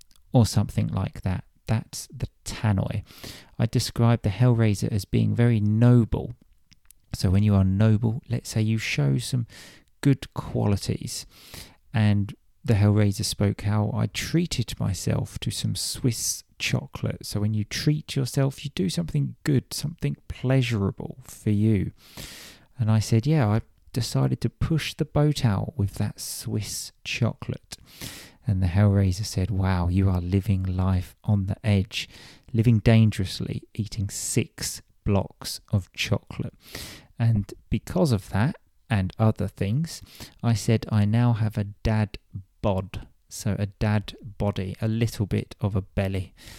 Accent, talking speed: British, 145 wpm